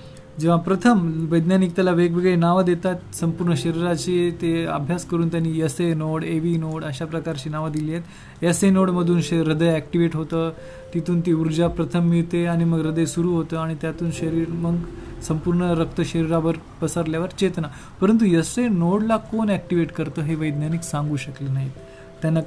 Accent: native